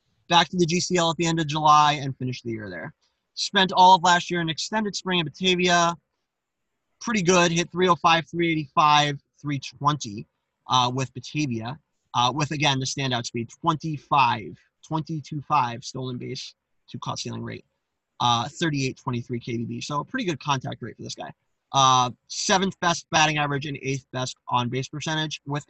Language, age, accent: English, 20-39, American